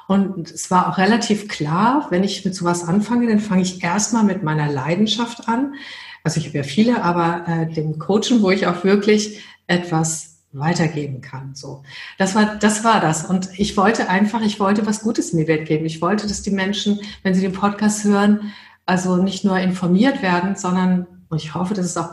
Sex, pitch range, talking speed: female, 170-210 Hz, 200 wpm